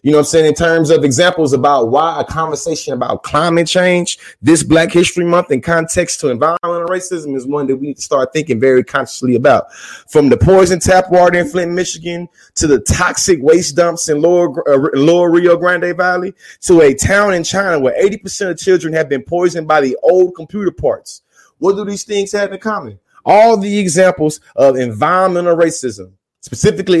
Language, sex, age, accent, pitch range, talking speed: English, male, 30-49, American, 160-195 Hz, 195 wpm